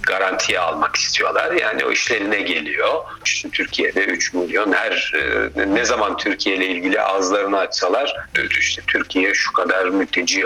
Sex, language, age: male, Turkish, 50-69